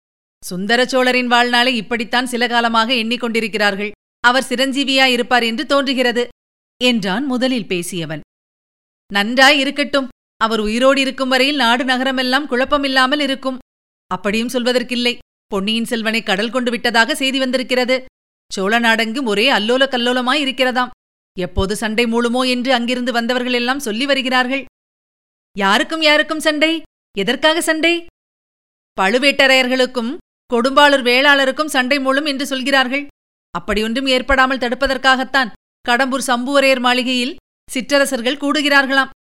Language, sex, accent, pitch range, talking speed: Tamil, female, native, 235-275 Hz, 100 wpm